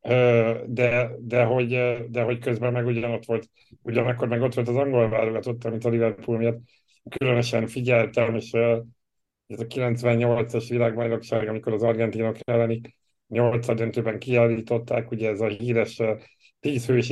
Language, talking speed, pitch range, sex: Hungarian, 135 wpm, 110-120 Hz, male